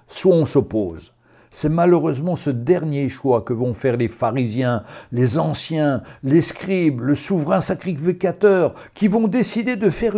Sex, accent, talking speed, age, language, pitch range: male, French, 140 wpm, 60-79, French, 140-195 Hz